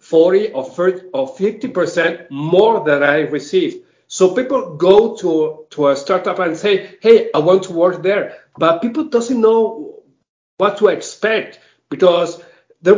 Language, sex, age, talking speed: English, male, 50-69, 150 wpm